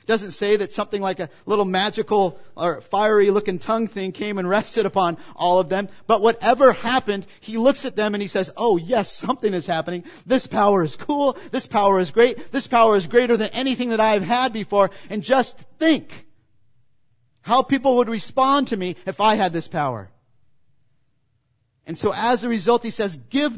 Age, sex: 40-59, male